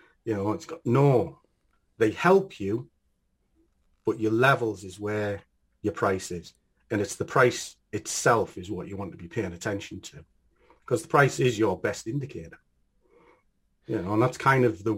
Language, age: English, 40-59